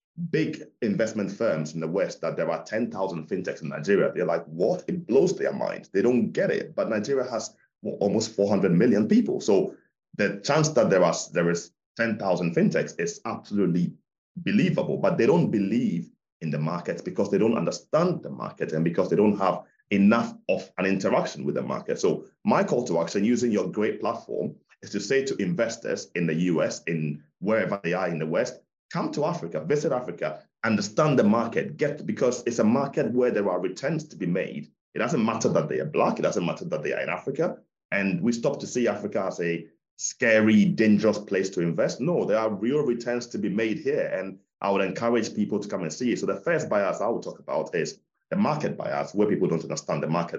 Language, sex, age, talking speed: English, male, 30-49, 215 wpm